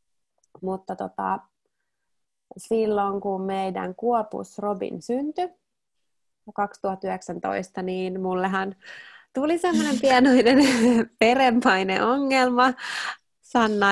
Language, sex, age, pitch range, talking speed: Finnish, female, 20-39, 190-230 Hz, 70 wpm